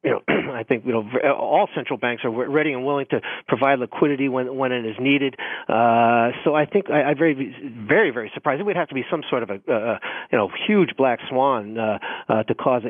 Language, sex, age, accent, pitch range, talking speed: English, male, 40-59, American, 125-160 Hz, 235 wpm